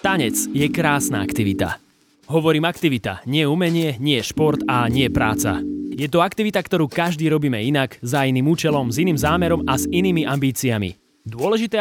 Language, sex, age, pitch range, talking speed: Slovak, male, 20-39, 130-170 Hz, 160 wpm